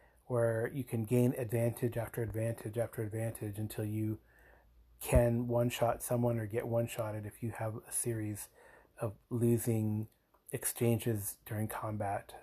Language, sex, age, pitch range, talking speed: English, male, 30-49, 105-115 Hz, 130 wpm